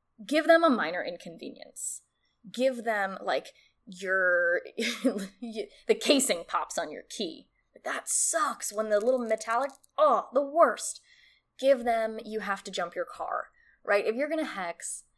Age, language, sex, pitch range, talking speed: 10-29, English, female, 195-290 Hz, 155 wpm